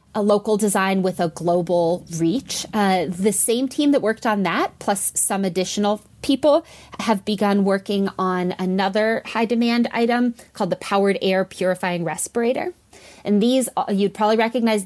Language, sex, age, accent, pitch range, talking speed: English, female, 20-39, American, 180-215 Hz, 155 wpm